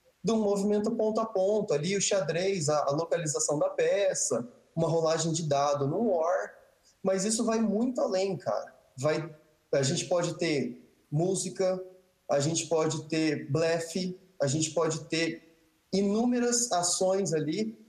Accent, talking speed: Brazilian, 145 wpm